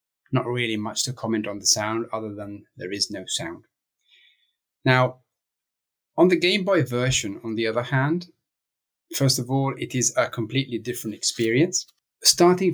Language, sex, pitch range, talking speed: English, male, 110-140 Hz, 160 wpm